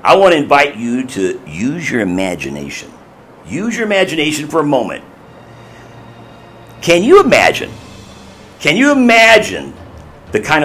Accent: American